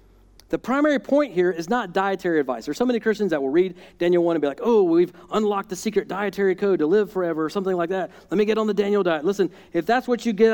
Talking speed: 275 wpm